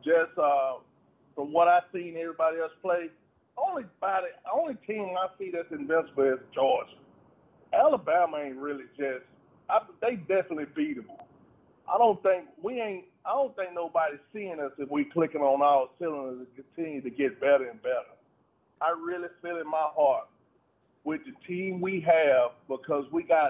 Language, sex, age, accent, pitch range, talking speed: English, male, 50-69, American, 155-205 Hz, 170 wpm